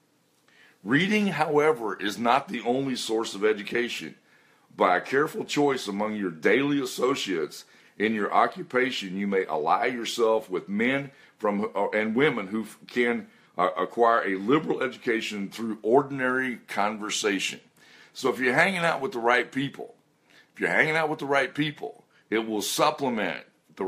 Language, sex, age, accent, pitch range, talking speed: English, male, 50-69, American, 105-140 Hz, 150 wpm